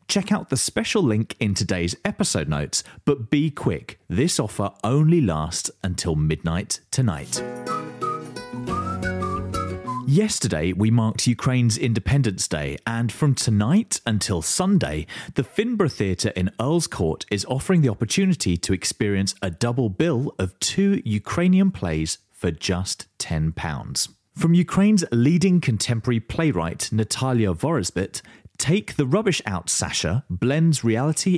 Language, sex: English, male